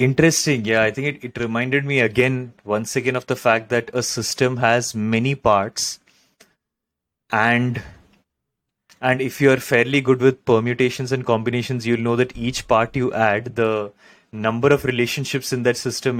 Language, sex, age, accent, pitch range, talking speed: English, male, 30-49, Indian, 110-130 Hz, 165 wpm